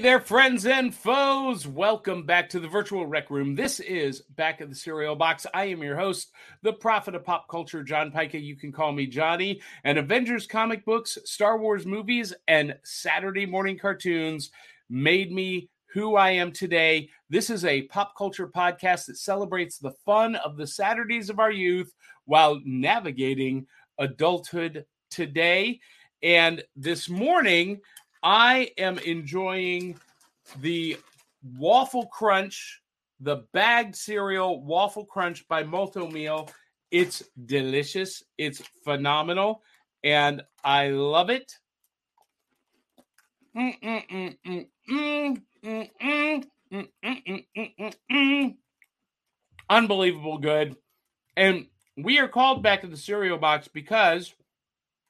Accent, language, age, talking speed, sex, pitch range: American, English, 40-59, 120 wpm, male, 155-215 Hz